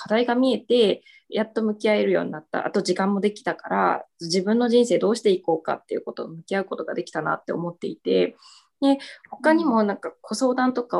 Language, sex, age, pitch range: Japanese, female, 20-39, 175-235 Hz